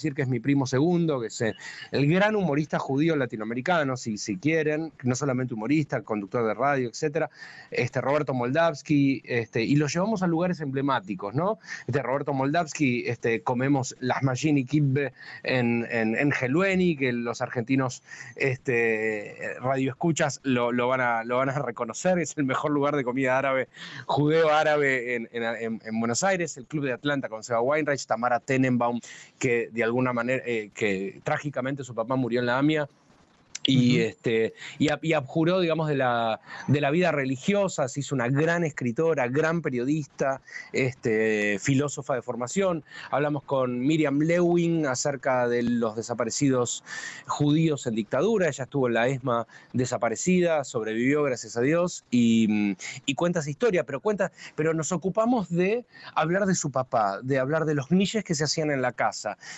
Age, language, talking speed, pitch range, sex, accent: 20-39, Spanish, 165 wpm, 120-155 Hz, male, Argentinian